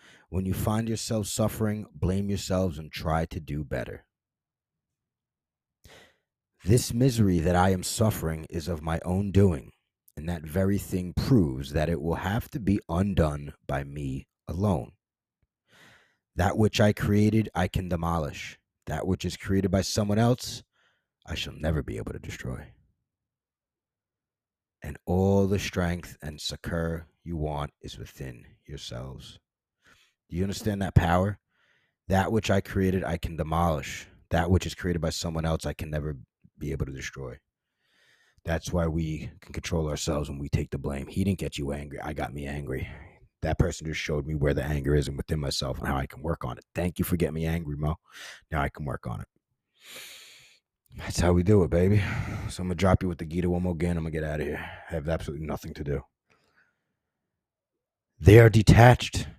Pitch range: 80-100 Hz